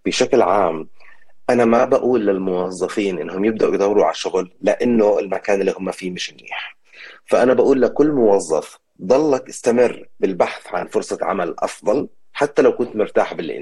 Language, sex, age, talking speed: Arabic, male, 30-49, 150 wpm